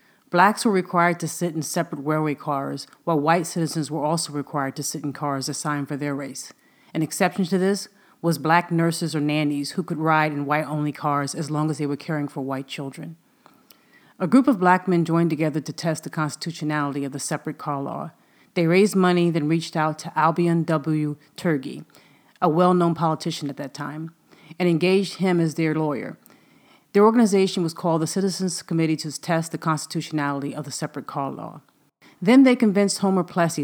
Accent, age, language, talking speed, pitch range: American, 40-59, English, 190 wpm, 150-175 Hz